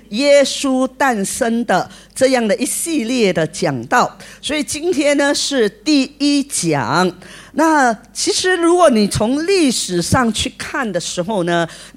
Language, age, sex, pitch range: Chinese, 40-59, female, 190-285 Hz